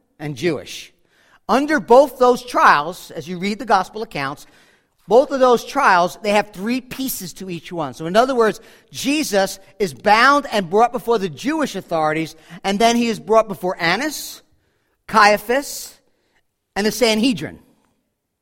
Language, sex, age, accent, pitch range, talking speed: English, male, 50-69, American, 170-230 Hz, 155 wpm